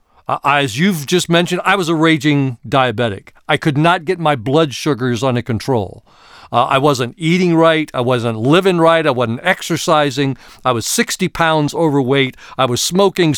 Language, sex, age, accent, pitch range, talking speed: English, male, 40-59, American, 130-180 Hz, 170 wpm